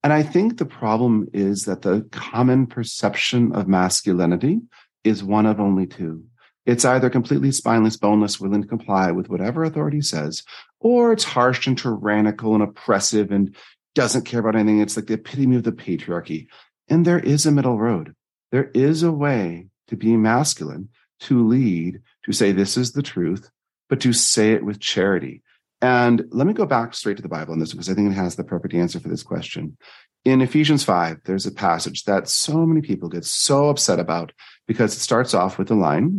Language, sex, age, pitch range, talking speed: English, male, 40-59, 100-145 Hz, 195 wpm